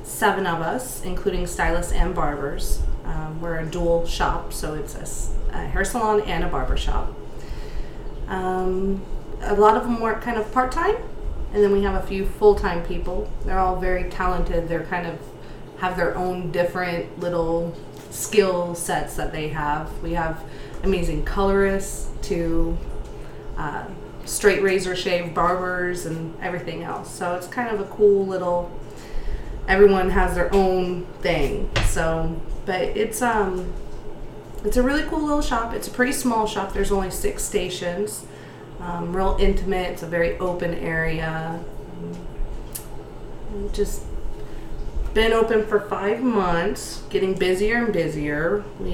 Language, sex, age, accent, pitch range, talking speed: English, female, 30-49, American, 170-205 Hz, 145 wpm